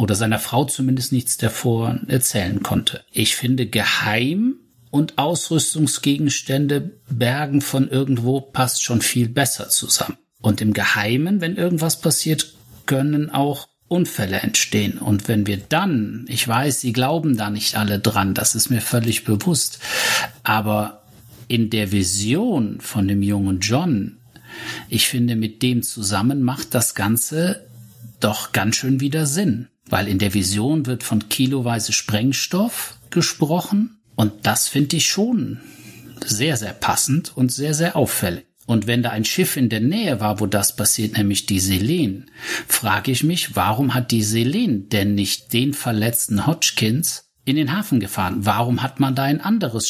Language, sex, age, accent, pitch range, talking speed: German, male, 50-69, German, 110-145 Hz, 155 wpm